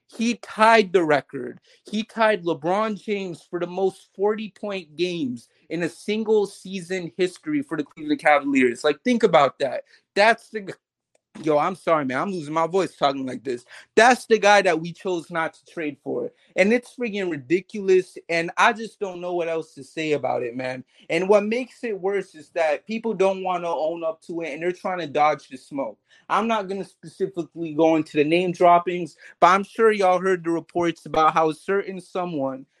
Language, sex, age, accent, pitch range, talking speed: English, male, 30-49, American, 155-195 Hz, 200 wpm